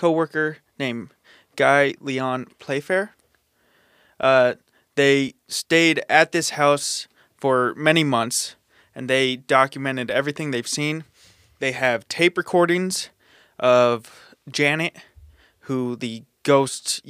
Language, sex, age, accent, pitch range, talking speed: English, male, 20-39, American, 125-145 Hz, 100 wpm